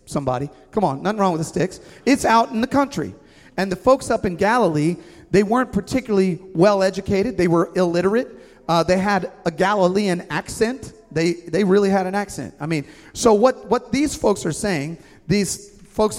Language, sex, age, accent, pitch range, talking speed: English, male, 40-59, American, 150-210 Hz, 185 wpm